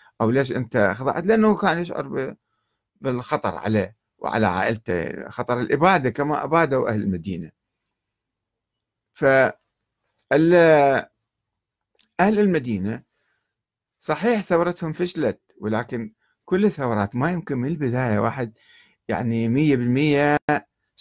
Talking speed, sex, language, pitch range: 95 wpm, male, Arabic, 110-155 Hz